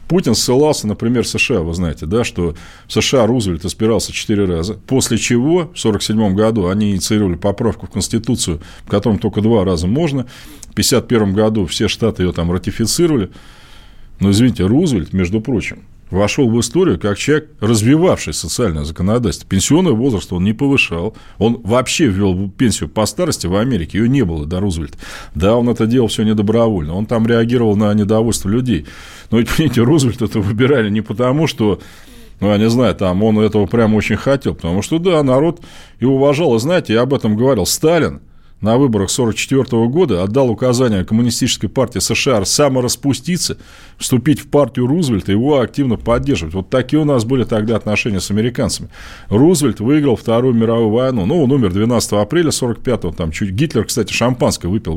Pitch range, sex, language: 100-125 Hz, male, Russian